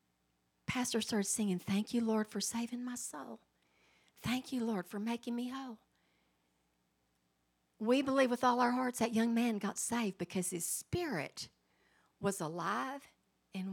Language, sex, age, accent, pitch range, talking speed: English, female, 50-69, American, 175-240 Hz, 150 wpm